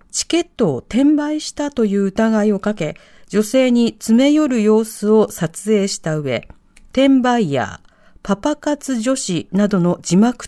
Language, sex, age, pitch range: Japanese, female, 40-59, 175-260 Hz